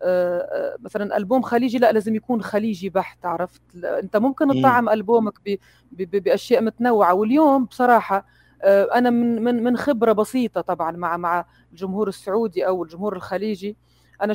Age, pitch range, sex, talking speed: 30-49, 180-235 Hz, female, 155 wpm